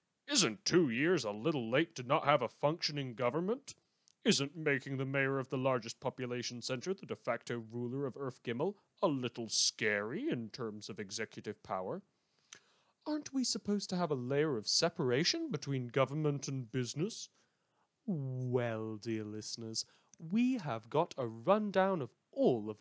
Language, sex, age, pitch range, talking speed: English, male, 30-49, 120-165 Hz, 160 wpm